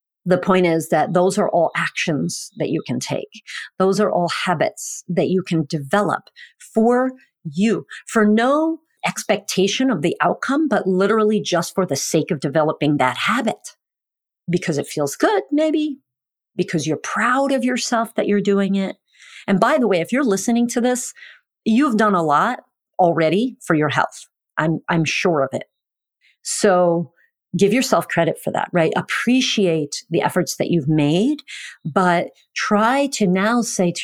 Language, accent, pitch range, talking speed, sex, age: English, American, 160-210 Hz, 165 wpm, female, 40-59